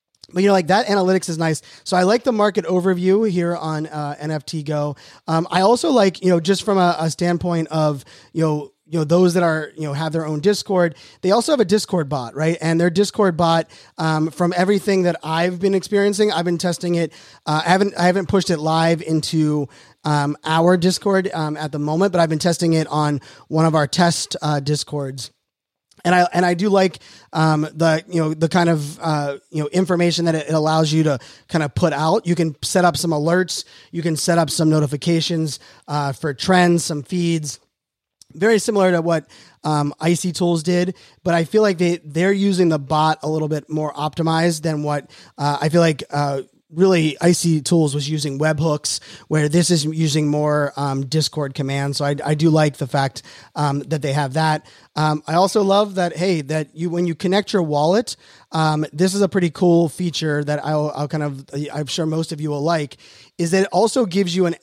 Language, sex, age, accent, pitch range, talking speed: English, male, 20-39, American, 150-180 Hz, 215 wpm